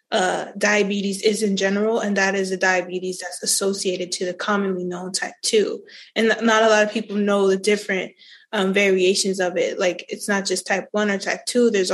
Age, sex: 20-39, female